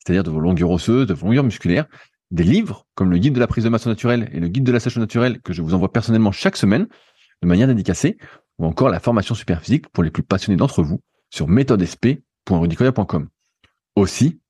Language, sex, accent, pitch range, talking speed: French, male, French, 90-125 Hz, 210 wpm